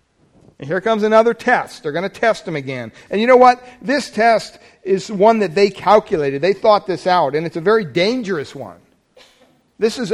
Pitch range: 145-215 Hz